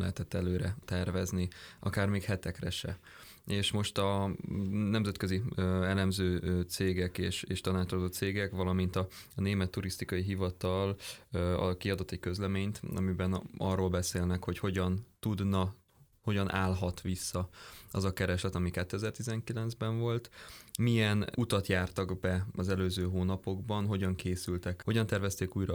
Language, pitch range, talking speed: Hungarian, 90-100 Hz, 125 wpm